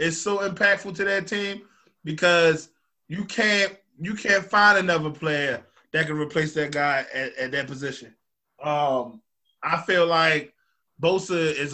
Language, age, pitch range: English, 20-39, 145-175 Hz